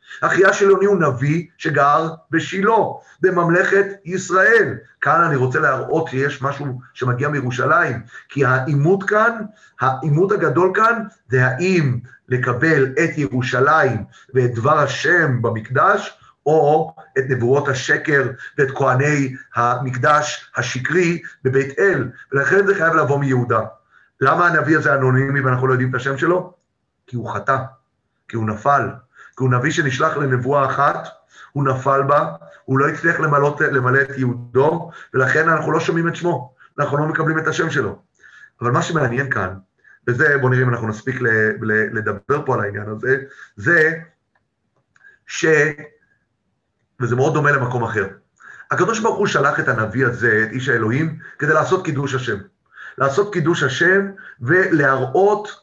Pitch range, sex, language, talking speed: 130-160 Hz, male, Hebrew, 140 wpm